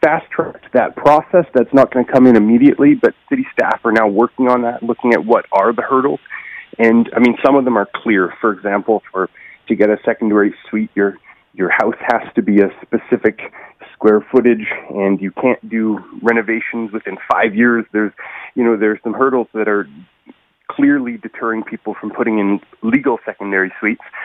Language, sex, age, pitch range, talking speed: English, male, 30-49, 105-130 Hz, 190 wpm